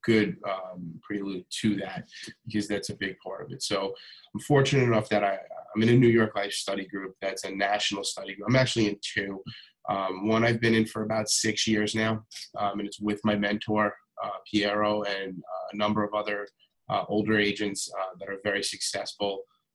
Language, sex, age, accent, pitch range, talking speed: English, male, 30-49, American, 100-110 Hz, 205 wpm